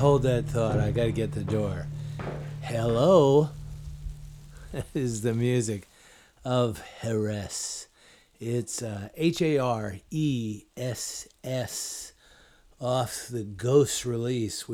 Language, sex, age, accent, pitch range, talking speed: English, male, 50-69, American, 110-145 Hz, 100 wpm